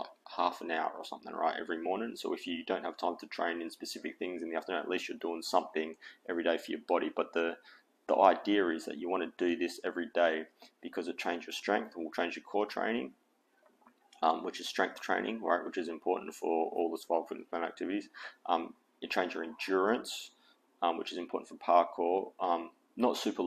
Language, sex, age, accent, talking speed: English, male, 20-39, Australian, 215 wpm